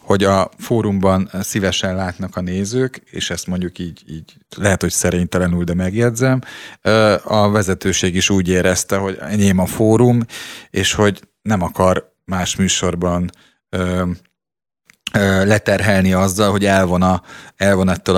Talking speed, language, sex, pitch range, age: 120 wpm, Hungarian, male, 95-110 Hz, 30-49